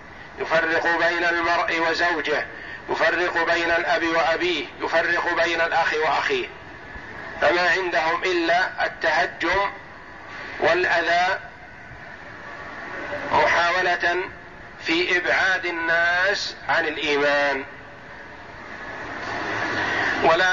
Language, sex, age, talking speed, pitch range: Arabic, male, 50-69, 70 wpm, 145-175 Hz